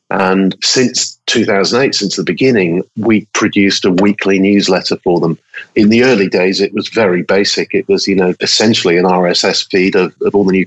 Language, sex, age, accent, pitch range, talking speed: English, male, 50-69, British, 95-115 Hz, 190 wpm